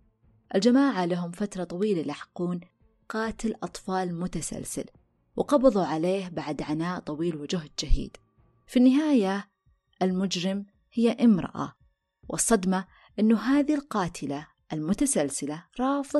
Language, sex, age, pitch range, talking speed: Arabic, female, 20-39, 175-225 Hz, 95 wpm